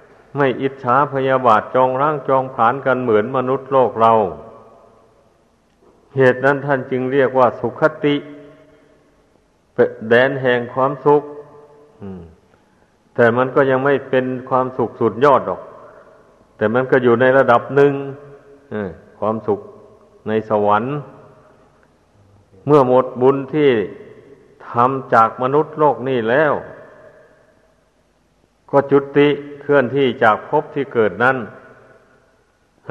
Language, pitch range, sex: Thai, 120-140 Hz, male